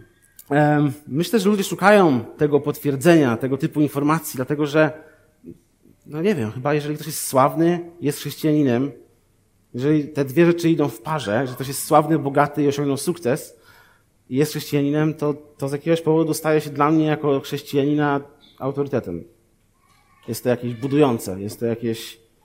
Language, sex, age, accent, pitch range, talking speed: Polish, male, 30-49, native, 125-160 Hz, 155 wpm